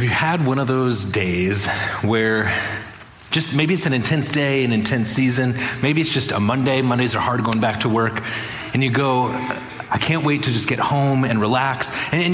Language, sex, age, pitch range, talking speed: English, male, 30-49, 125-155 Hz, 205 wpm